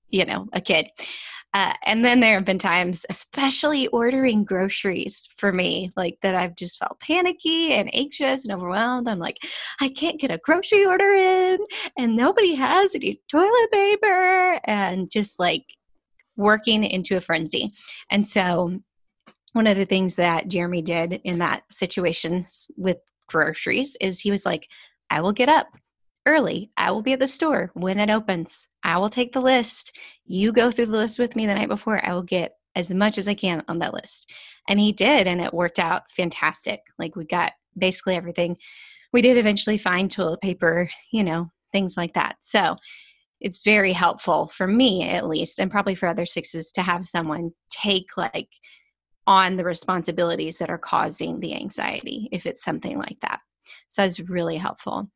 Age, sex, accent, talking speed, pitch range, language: 20-39, female, American, 180 wpm, 180-250 Hz, English